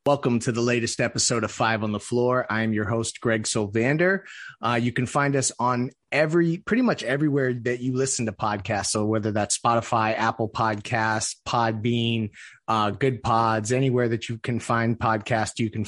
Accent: American